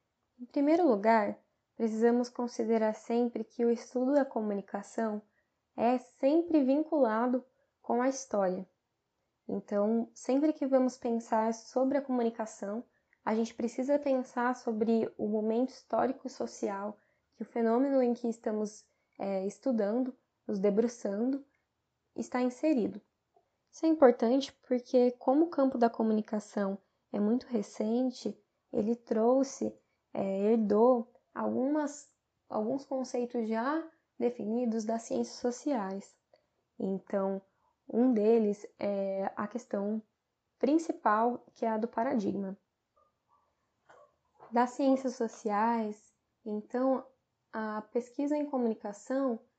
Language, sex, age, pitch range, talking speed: Portuguese, female, 10-29, 220-260 Hz, 110 wpm